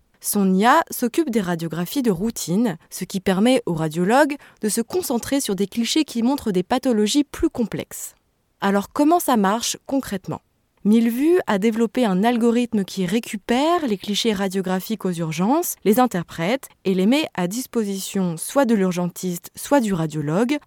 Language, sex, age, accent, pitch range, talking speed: French, female, 20-39, French, 185-250 Hz, 155 wpm